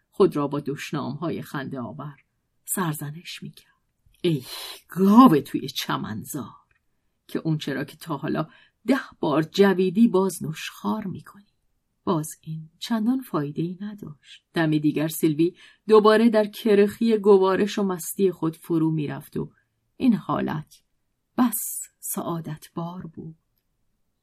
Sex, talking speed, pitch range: female, 120 wpm, 160-205 Hz